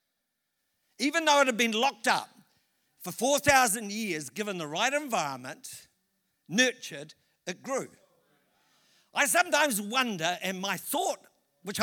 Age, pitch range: 60-79, 195-265 Hz